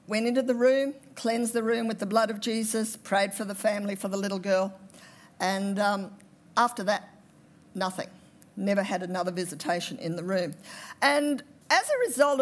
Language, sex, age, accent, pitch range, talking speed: English, female, 50-69, Australian, 195-280 Hz, 175 wpm